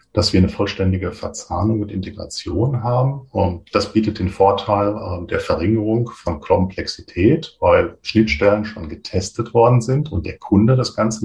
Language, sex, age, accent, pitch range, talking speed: German, male, 40-59, German, 90-110 Hz, 155 wpm